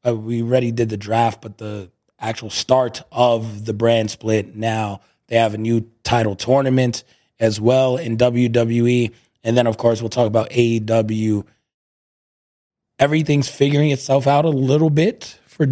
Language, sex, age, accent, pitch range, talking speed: English, male, 20-39, American, 110-135 Hz, 155 wpm